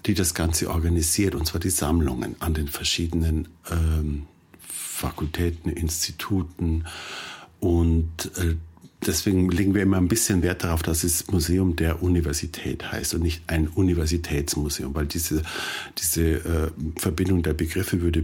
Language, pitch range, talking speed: German, 80-95 Hz, 140 wpm